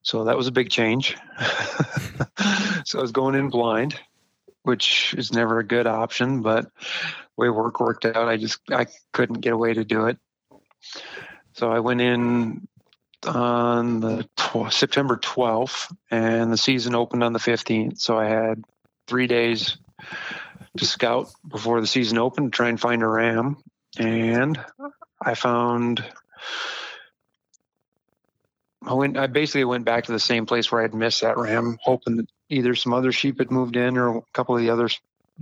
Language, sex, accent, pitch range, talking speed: English, male, American, 115-125 Hz, 170 wpm